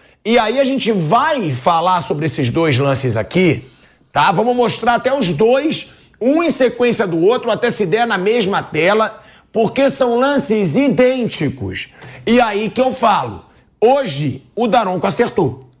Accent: Brazilian